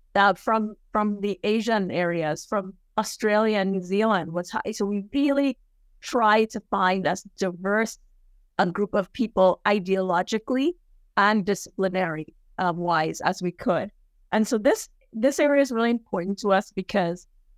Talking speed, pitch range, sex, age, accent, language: 150 wpm, 185-220 Hz, female, 50-69, American, English